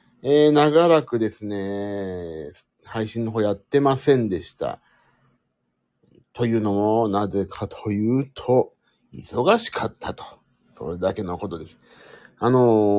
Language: Japanese